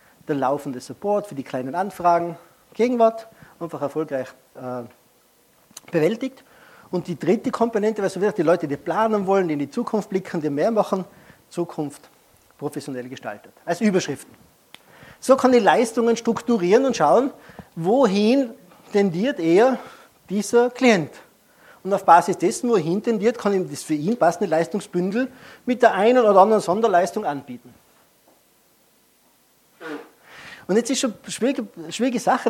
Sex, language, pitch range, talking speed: male, German, 170-235 Hz, 140 wpm